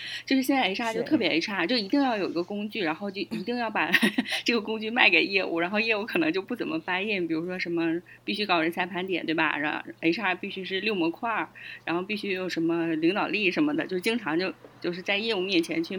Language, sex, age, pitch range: Chinese, female, 20-39, 185-295 Hz